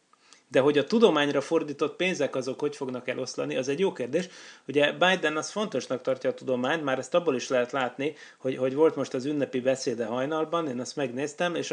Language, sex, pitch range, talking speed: Hungarian, male, 125-150 Hz, 200 wpm